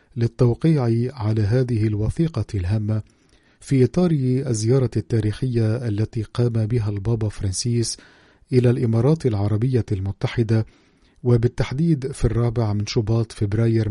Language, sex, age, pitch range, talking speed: Arabic, male, 50-69, 110-125 Hz, 105 wpm